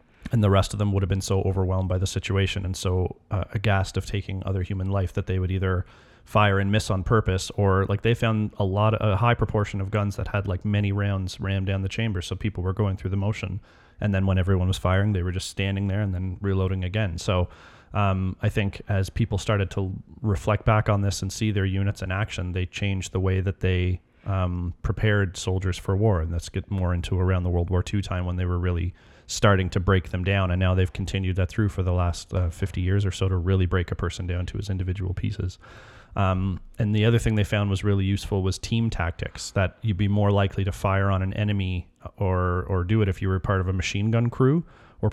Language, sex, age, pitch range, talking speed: English, male, 30-49, 95-105 Hz, 245 wpm